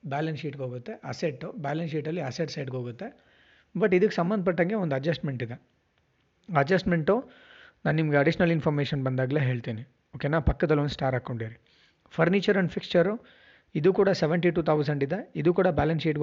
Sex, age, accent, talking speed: male, 30-49, native, 140 wpm